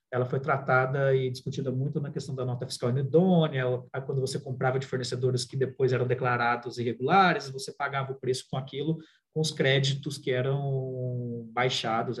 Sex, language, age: male, Portuguese, 30-49